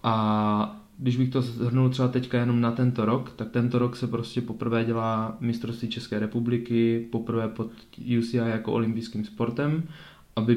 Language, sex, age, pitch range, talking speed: Czech, male, 20-39, 105-115 Hz, 160 wpm